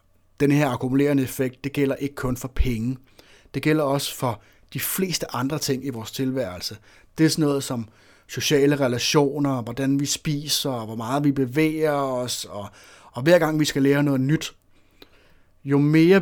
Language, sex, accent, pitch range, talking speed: Danish, male, native, 125-145 Hz, 175 wpm